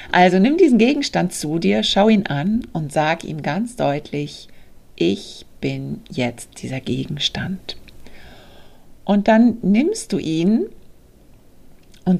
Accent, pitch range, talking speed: German, 145-200 Hz, 125 wpm